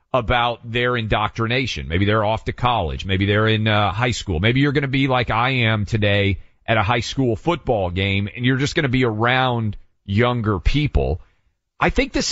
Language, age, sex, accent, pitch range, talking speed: English, 40-59, male, American, 110-165 Hz, 200 wpm